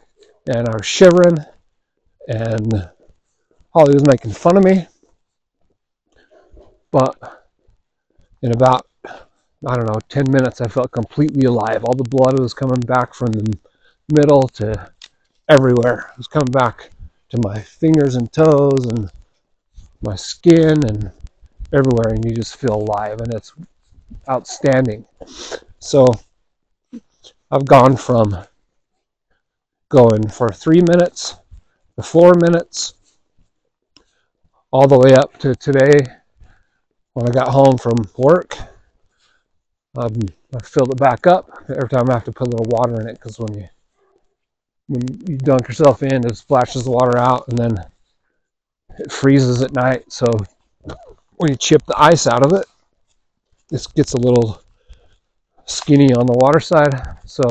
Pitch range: 110-135 Hz